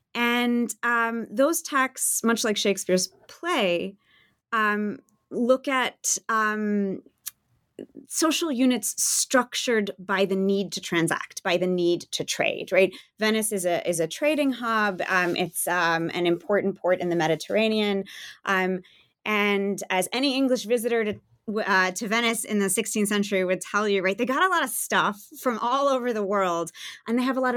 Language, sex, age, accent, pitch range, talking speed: English, female, 20-39, American, 185-240 Hz, 165 wpm